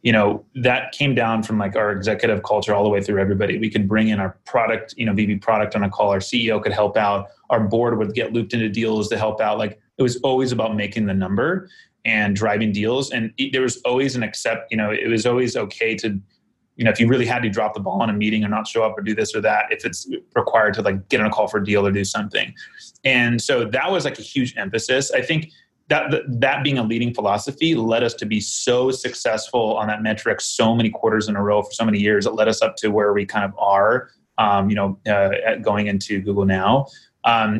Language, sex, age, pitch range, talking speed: English, male, 30-49, 105-125 Hz, 255 wpm